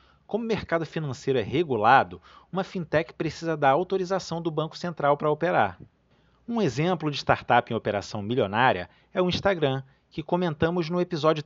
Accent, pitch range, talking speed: Brazilian, 130-180 Hz, 155 wpm